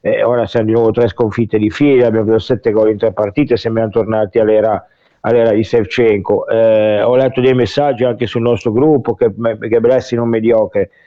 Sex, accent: male, native